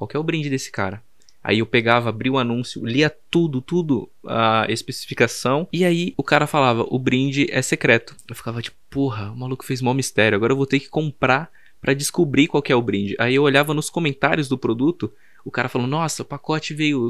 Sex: male